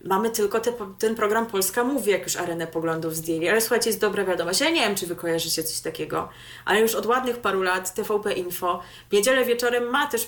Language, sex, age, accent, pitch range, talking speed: Polish, female, 20-39, native, 195-255 Hz, 220 wpm